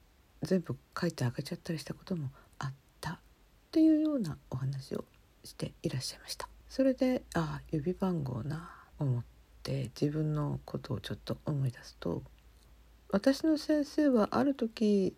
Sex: female